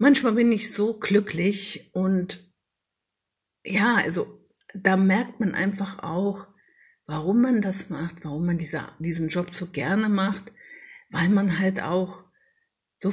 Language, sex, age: German, female, 60-79